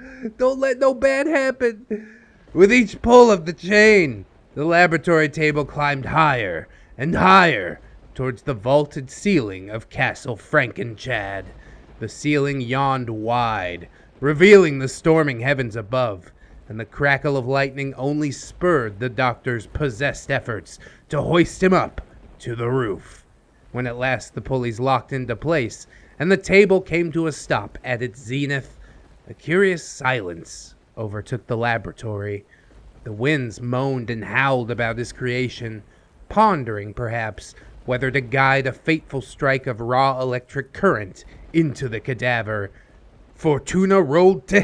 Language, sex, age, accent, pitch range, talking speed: English, male, 30-49, American, 120-170 Hz, 140 wpm